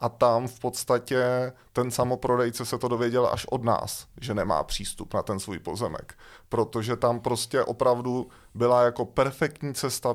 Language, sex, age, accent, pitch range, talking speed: Czech, male, 30-49, native, 115-130 Hz, 160 wpm